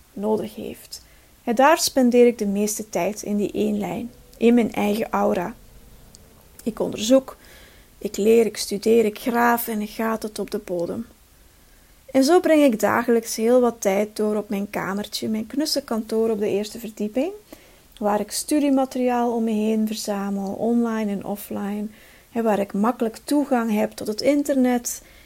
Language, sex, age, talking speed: Dutch, female, 40-59, 165 wpm